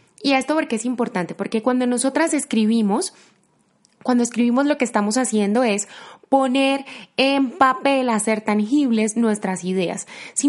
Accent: Colombian